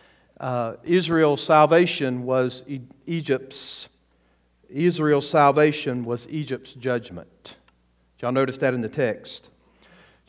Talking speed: 110 wpm